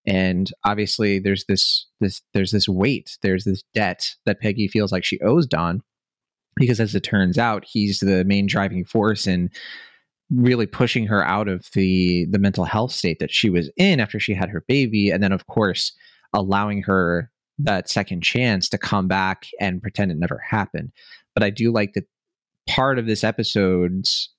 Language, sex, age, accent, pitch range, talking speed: English, male, 30-49, American, 95-120 Hz, 180 wpm